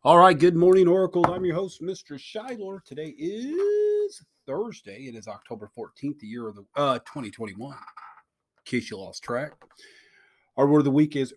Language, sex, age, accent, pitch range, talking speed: English, male, 30-49, American, 120-165 Hz, 175 wpm